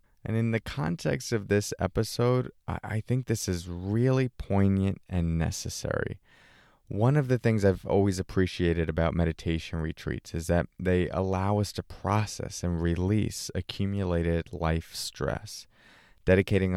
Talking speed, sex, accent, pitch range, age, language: 135 wpm, male, American, 90-115 Hz, 20-39, English